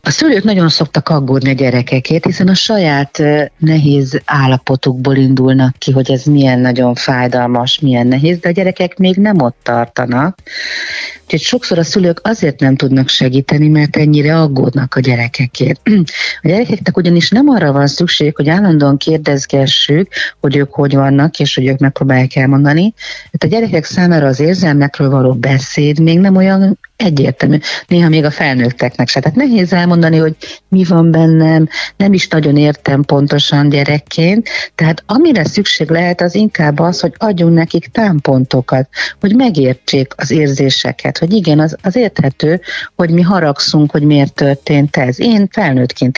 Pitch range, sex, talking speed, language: 135-180 Hz, female, 155 wpm, Hungarian